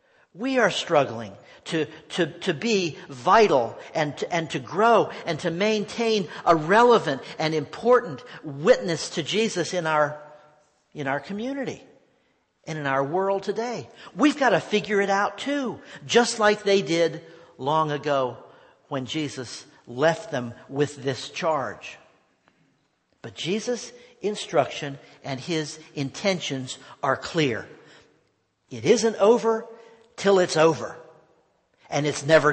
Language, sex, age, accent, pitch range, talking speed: English, male, 50-69, American, 150-225 Hz, 130 wpm